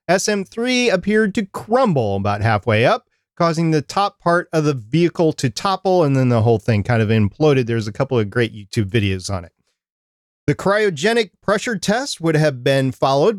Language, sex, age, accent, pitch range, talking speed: English, male, 40-59, American, 120-180 Hz, 185 wpm